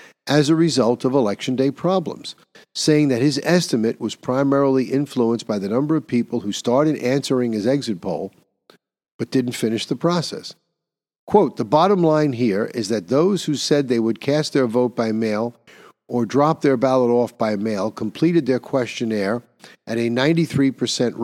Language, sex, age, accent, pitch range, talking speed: English, male, 50-69, American, 115-145 Hz, 170 wpm